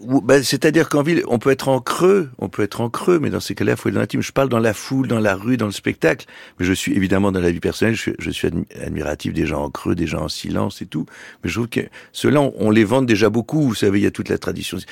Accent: French